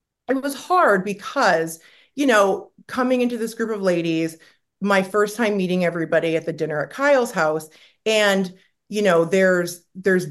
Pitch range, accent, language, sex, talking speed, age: 185-255 Hz, American, English, female, 165 wpm, 30-49